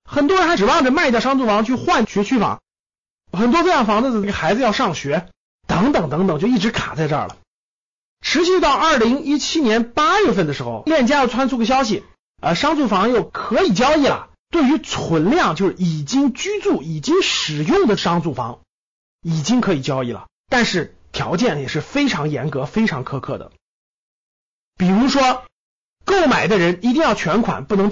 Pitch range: 170-270 Hz